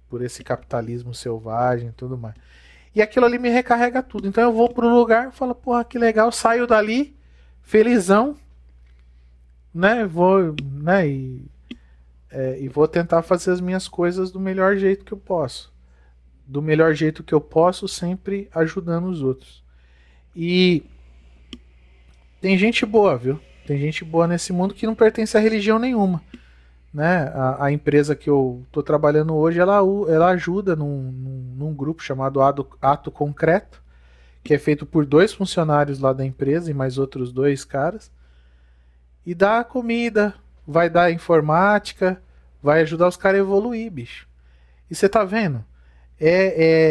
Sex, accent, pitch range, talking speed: male, Brazilian, 120-190 Hz, 150 wpm